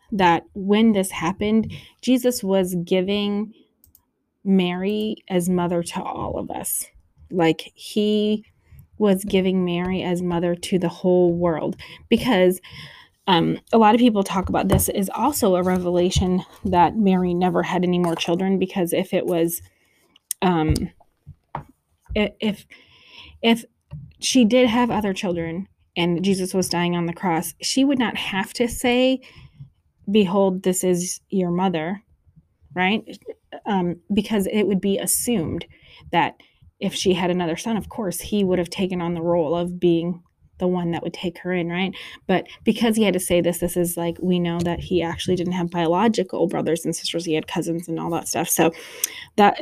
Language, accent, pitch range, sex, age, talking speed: English, American, 175-205 Hz, female, 20-39, 165 wpm